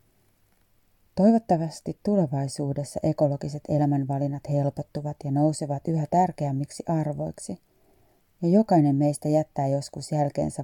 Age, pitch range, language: 30-49, 135-155 Hz, Finnish